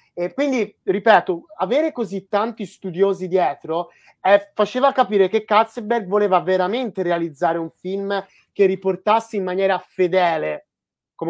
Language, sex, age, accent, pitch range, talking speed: Italian, male, 30-49, native, 170-215 Hz, 125 wpm